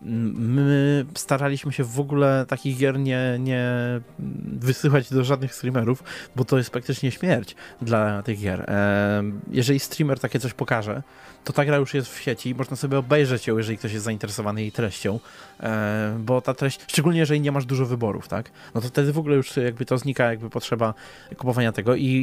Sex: male